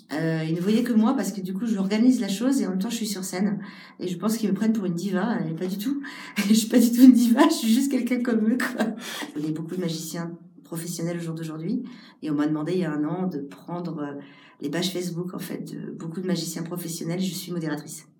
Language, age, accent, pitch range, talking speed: French, 40-59, French, 155-205 Hz, 275 wpm